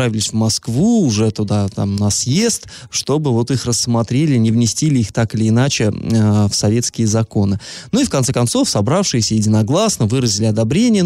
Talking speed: 165 wpm